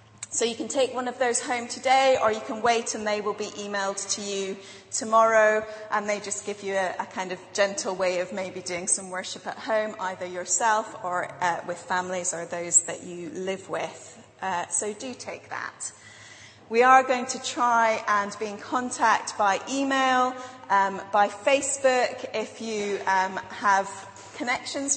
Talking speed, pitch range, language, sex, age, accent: 180 wpm, 185-235 Hz, English, female, 30-49, British